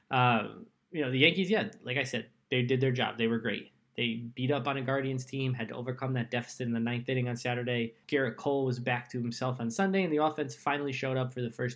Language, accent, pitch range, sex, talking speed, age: English, American, 120-180 Hz, male, 260 wpm, 20-39